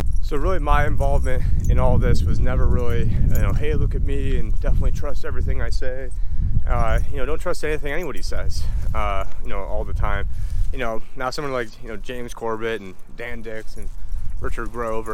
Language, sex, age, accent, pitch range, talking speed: English, male, 30-49, American, 80-110 Hz, 200 wpm